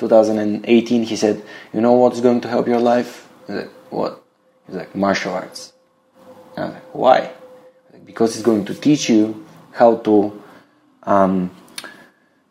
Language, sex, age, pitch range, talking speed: Bulgarian, male, 20-39, 105-135 Hz, 175 wpm